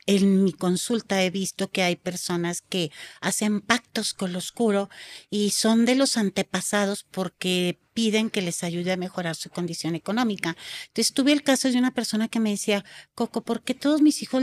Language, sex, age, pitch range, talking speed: Spanish, female, 40-59, 185-235 Hz, 185 wpm